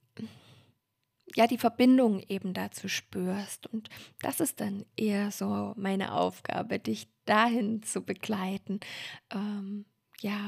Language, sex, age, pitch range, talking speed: German, female, 20-39, 195-225 Hz, 115 wpm